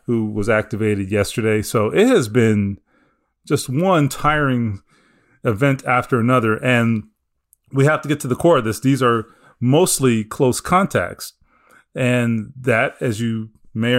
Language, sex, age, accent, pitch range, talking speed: English, male, 30-49, American, 115-150 Hz, 145 wpm